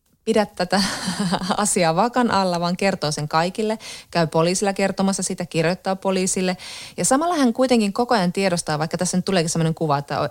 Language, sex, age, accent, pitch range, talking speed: Finnish, female, 30-49, native, 155-210 Hz, 170 wpm